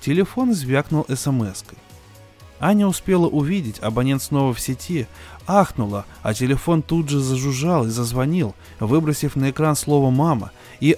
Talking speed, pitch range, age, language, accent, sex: 130 wpm, 115-175 Hz, 20-39, Russian, native, male